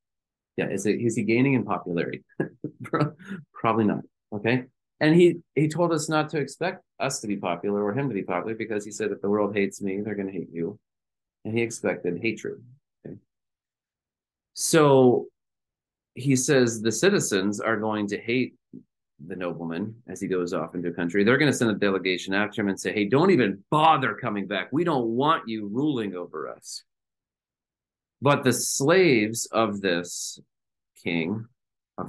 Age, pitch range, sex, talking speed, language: 30-49, 95-125 Hz, male, 170 wpm, English